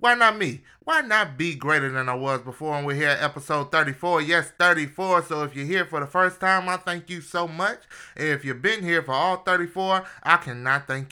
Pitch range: 140-185 Hz